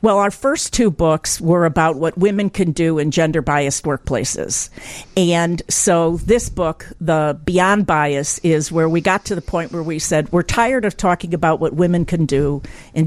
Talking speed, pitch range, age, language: 190 wpm, 160-195 Hz, 50-69, English